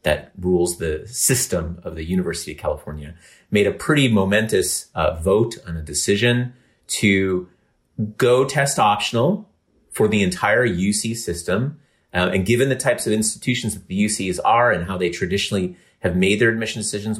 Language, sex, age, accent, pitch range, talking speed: English, male, 30-49, American, 95-120 Hz, 165 wpm